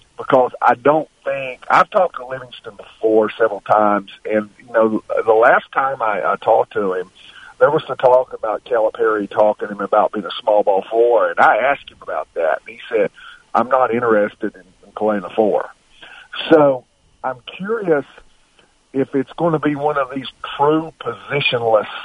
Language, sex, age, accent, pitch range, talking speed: English, male, 50-69, American, 110-145 Hz, 185 wpm